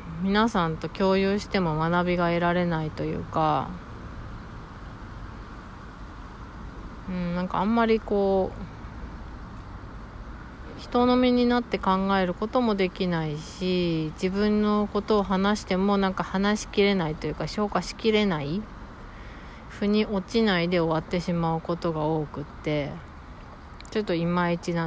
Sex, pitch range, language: female, 155-205 Hz, Japanese